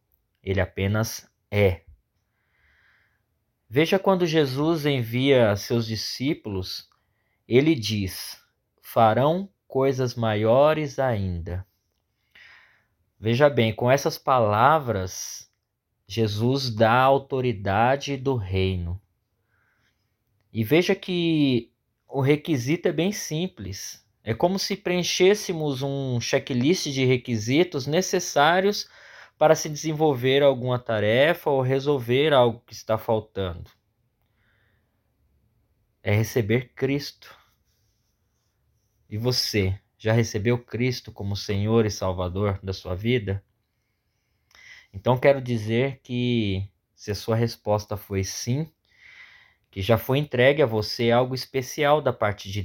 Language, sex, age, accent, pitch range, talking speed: Portuguese, male, 20-39, Brazilian, 105-135 Hz, 100 wpm